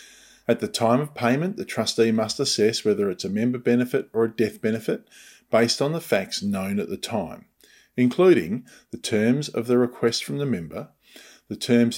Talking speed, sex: 185 wpm, male